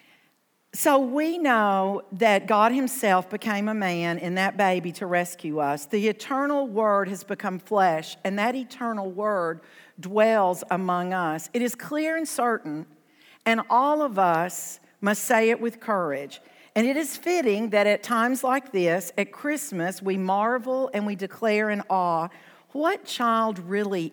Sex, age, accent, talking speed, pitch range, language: female, 50-69, American, 155 wpm, 185-240 Hz, English